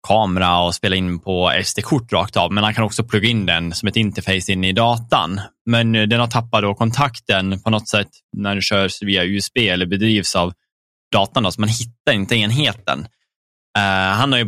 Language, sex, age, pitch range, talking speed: Swedish, male, 10-29, 95-115 Hz, 200 wpm